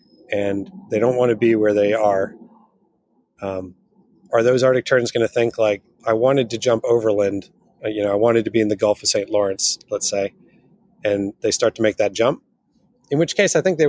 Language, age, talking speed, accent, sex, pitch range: English, 30-49, 215 wpm, American, male, 105-120 Hz